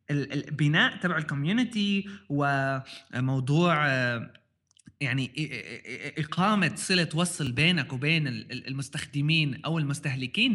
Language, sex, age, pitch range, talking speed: Arabic, male, 20-39, 135-190 Hz, 75 wpm